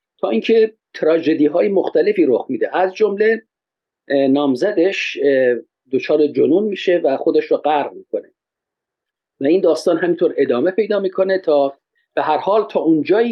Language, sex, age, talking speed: Persian, male, 50-69, 135 wpm